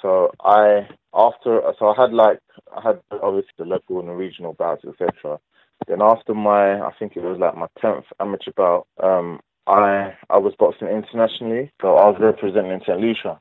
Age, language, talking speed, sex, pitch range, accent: 20-39, English, 190 wpm, male, 90-110 Hz, British